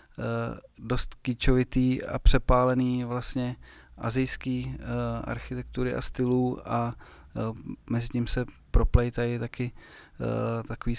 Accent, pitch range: native, 120-130 Hz